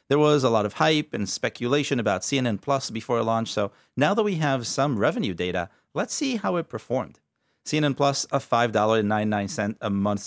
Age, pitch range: 30-49, 100-135 Hz